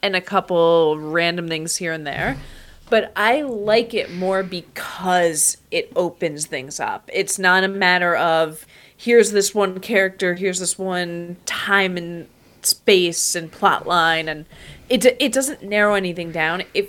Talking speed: 155 wpm